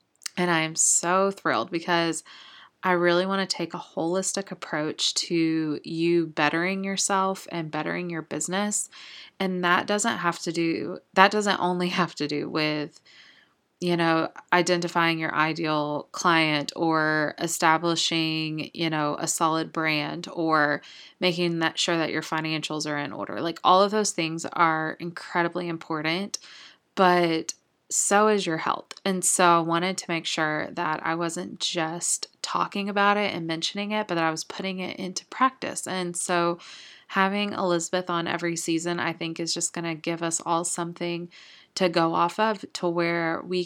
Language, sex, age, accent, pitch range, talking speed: English, female, 20-39, American, 160-185 Hz, 165 wpm